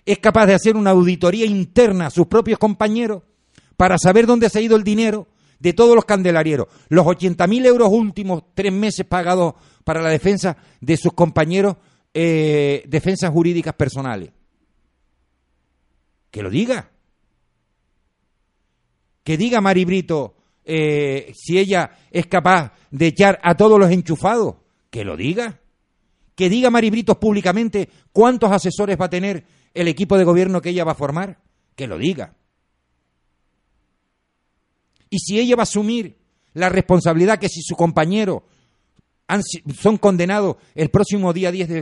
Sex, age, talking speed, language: male, 50-69, 150 wpm, Spanish